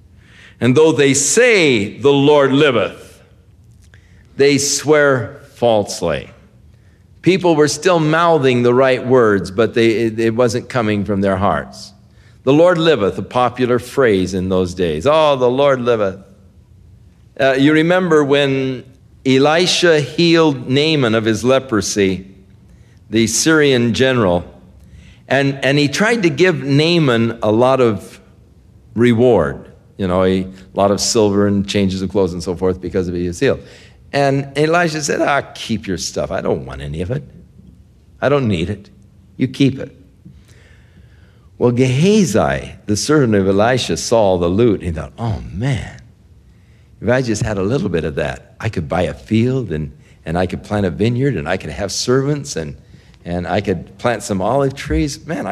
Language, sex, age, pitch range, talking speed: English, male, 50-69, 95-140 Hz, 160 wpm